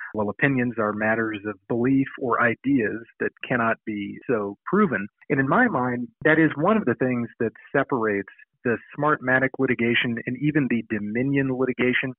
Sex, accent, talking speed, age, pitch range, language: male, American, 160 wpm, 40-59, 115-140 Hz, English